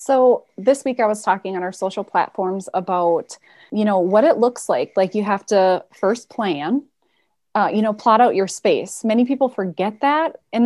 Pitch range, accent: 195-265 Hz, American